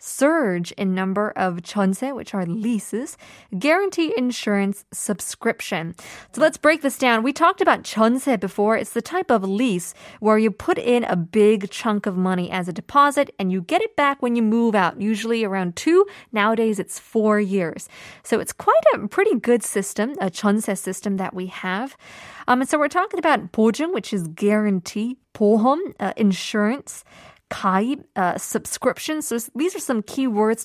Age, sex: 20-39, female